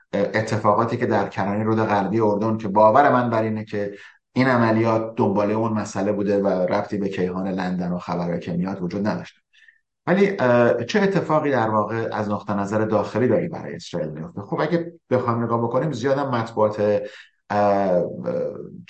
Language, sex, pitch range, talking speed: Persian, male, 100-120 Hz, 150 wpm